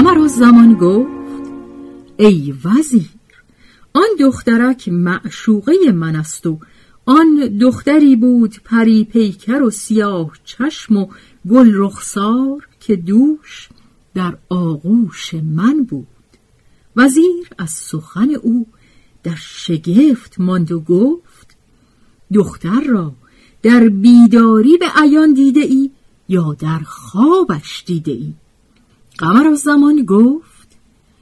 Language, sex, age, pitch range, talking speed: Persian, female, 50-69, 175-265 Hz, 100 wpm